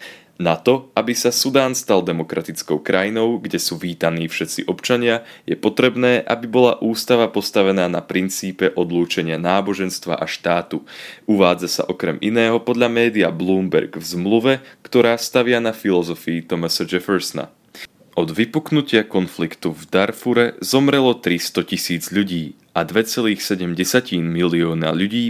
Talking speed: 125 wpm